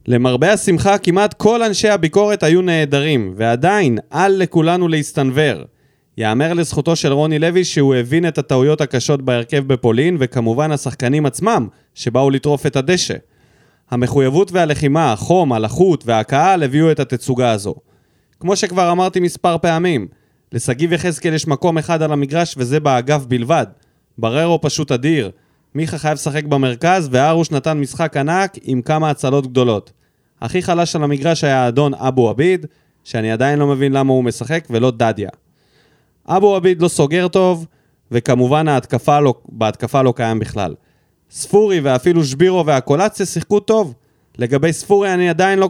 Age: 20-39